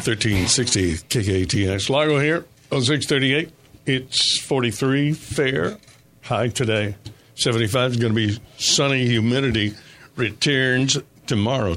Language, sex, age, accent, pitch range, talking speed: English, male, 60-79, American, 105-140 Hz, 100 wpm